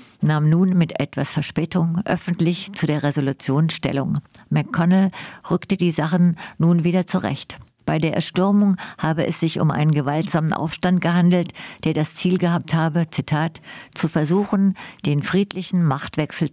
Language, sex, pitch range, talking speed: German, female, 150-180 Hz, 140 wpm